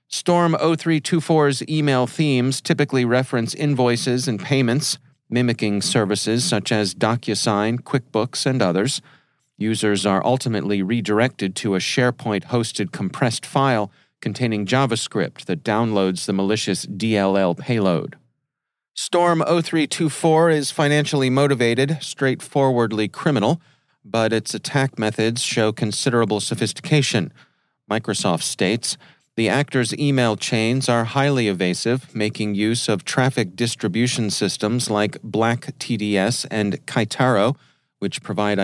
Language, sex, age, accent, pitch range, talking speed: English, male, 40-59, American, 105-135 Hz, 105 wpm